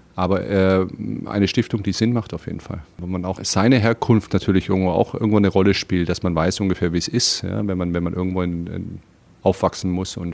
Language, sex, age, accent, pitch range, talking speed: German, male, 40-59, German, 95-105 Hz, 230 wpm